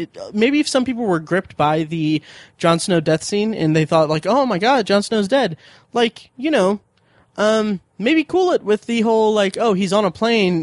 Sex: male